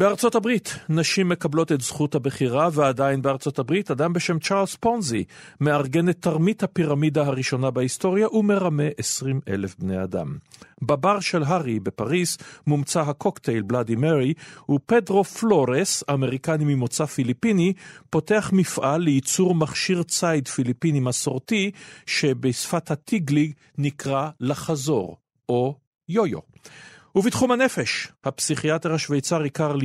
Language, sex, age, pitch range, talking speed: Hebrew, male, 50-69, 130-175 Hz, 115 wpm